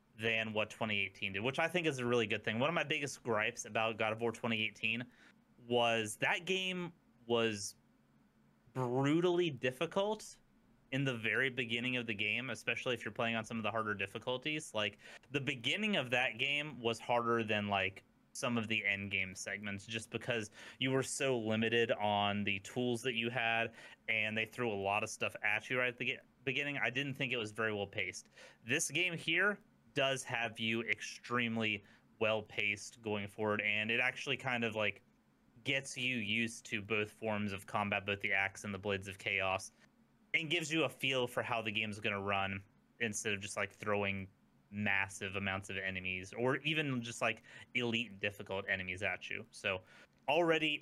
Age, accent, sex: 30-49, American, male